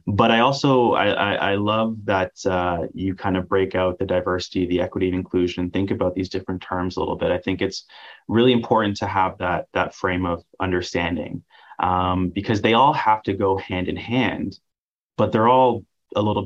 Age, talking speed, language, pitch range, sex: 20-39, 195 wpm, English, 90-110 Hz, male